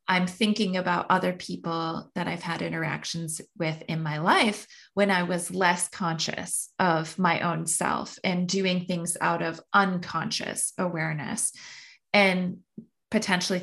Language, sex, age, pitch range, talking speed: English, female, 20-39, 165-195 Hz, 135 wpm